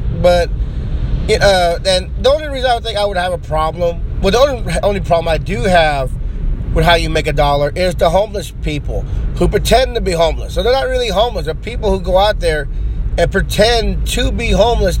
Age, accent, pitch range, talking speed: 30-49, American, 155-200 Hz, 210 wpm